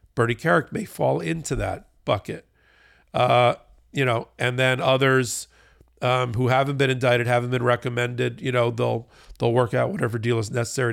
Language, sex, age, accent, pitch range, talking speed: English, male, 50-69, American, 115-135 Hz, 170 wpm